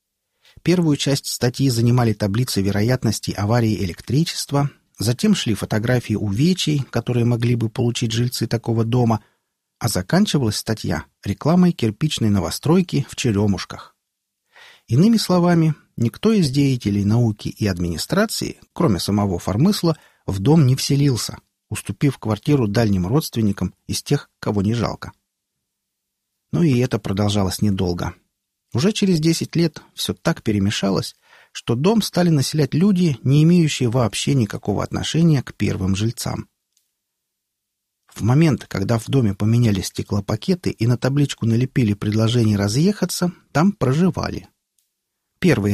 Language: Russian